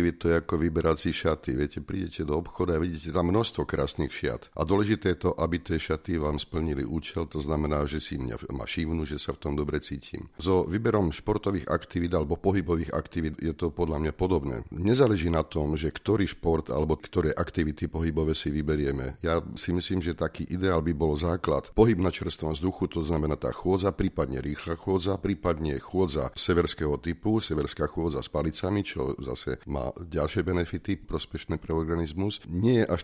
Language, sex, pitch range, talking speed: Slovak, male, 80-90 Hz, 185 wpm